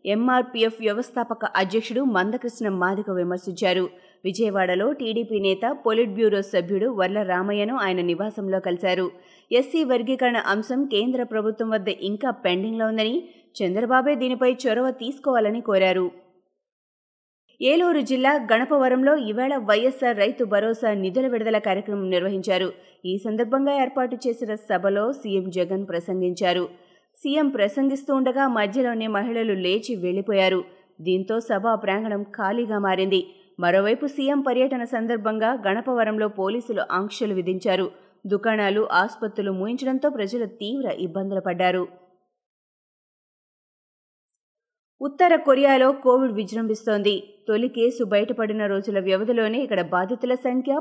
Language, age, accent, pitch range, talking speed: Telugu, 20-39, native, 190-245 Hz, 105 wpm